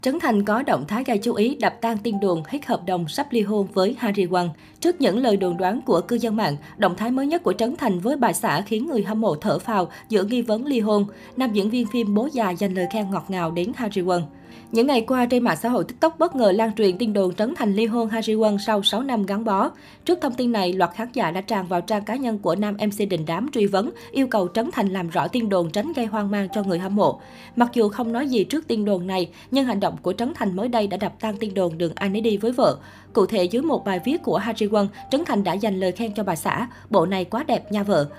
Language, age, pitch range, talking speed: Vietnamese, 20-39, 190-235 Hz, 275 wpm